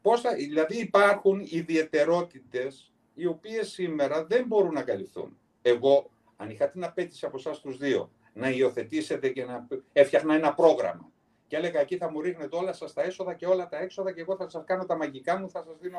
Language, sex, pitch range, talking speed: Greek, male, 145-230 Hz, 190 wpm